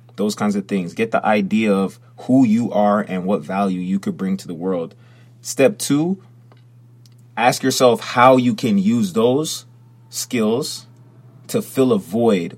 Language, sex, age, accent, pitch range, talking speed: English, male, 30-49, American, 105-135 Hz, 160 wpm